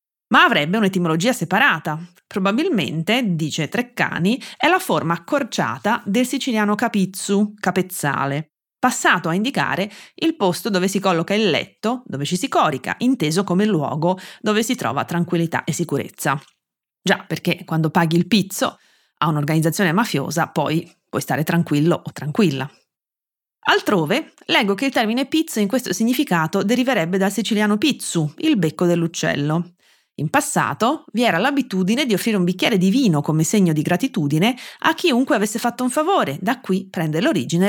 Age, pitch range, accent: 30-49, 160-215 Hz, native